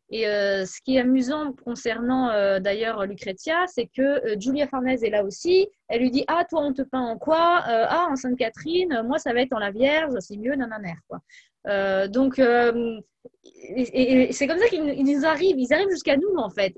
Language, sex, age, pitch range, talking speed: French, female, 20-39, 225-295 Hz, 220 wpm